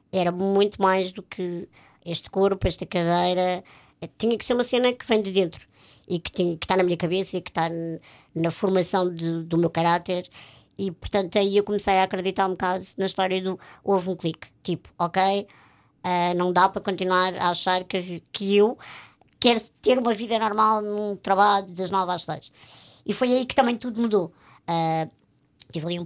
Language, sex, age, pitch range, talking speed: Portuguese, male, 60-79, 175-205 Hz, 190 wpm